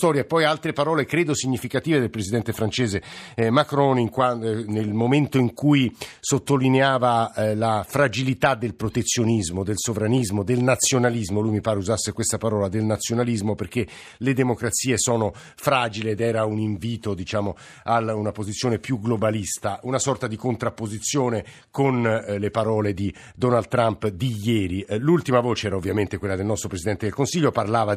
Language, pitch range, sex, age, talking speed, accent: Italian, 105-130 Hz, male, 50-69, 150 wpm, native